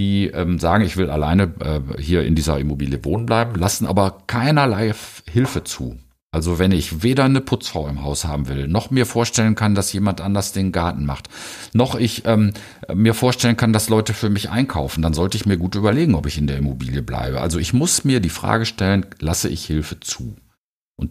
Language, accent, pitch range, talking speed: German, German, 80-110 Hz, 210 wpm